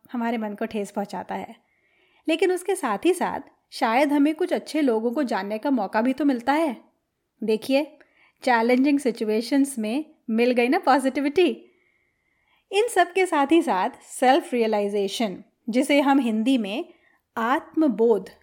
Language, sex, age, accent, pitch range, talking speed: Hindi, female, 30-49, native, 225-300 Hz, 145 wpm